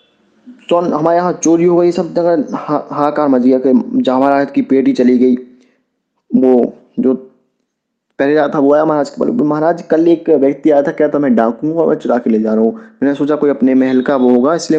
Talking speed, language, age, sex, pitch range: 215 wpm, Hindi, 20-39, male, 135-200 Hz